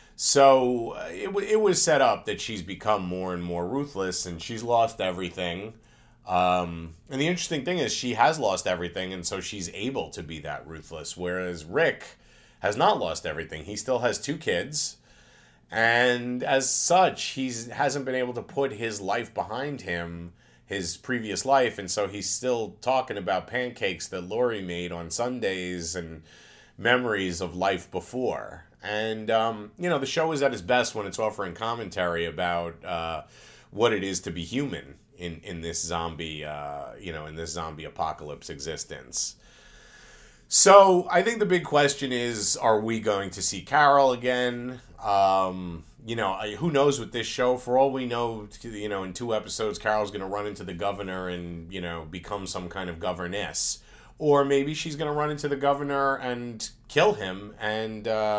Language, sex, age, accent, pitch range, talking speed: English, male, 30-49, American, 90-125 Hz, 175 wpm